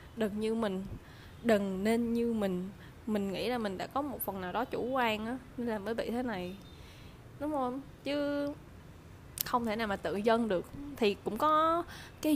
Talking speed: 190 wpm